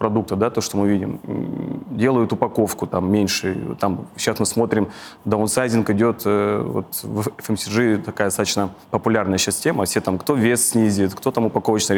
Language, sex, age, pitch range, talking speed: Russian, male, 20-39, 100-110 Hz, 165 wpm